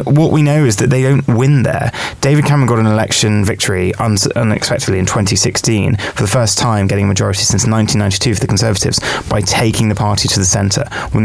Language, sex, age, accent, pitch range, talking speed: English, male, 20-39, British, 100-125 Hz, 205 wpm